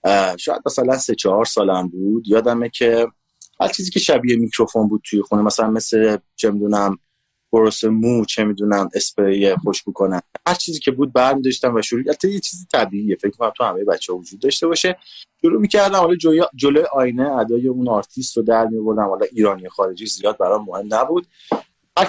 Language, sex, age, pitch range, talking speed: Persian, male, 30-49, 100-150 Hz, 180 wpm